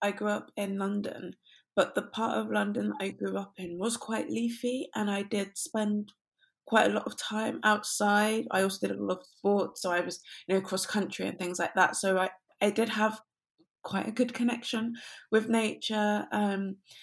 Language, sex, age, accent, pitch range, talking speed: English, female, 20-39, British, 175-215 Hz, 200 wpm